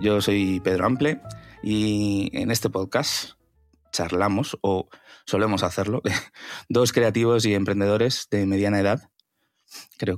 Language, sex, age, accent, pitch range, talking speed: Spanish, male, 20-39, Spanish, 100-115 Hz, 120 wpm